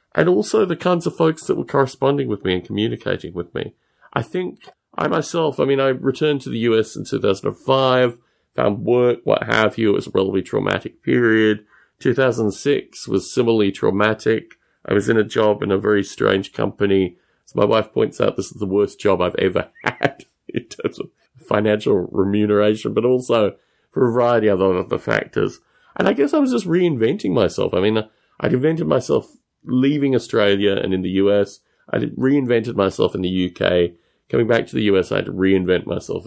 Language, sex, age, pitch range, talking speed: English, male, 40-59, 100-130 Hz, 190 wpm